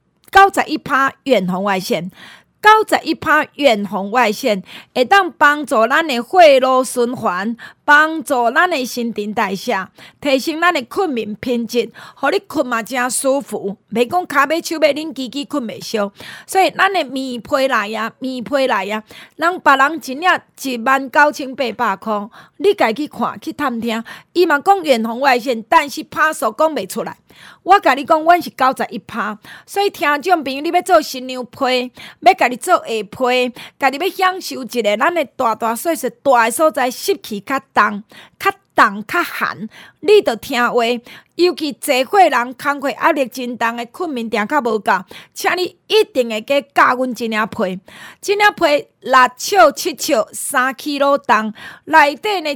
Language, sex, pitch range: Chinese, female, 235-320 Hz